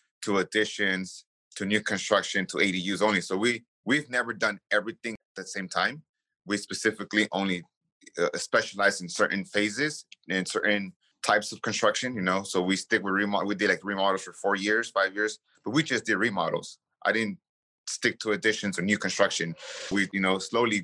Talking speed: 185 wpm